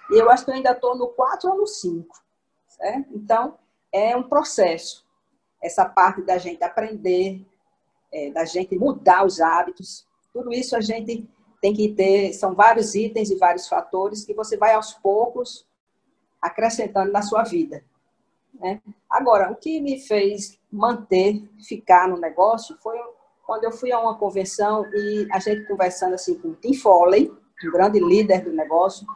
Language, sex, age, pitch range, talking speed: Portuguese, female, 40-59, 185-245 Hz, 165 wpm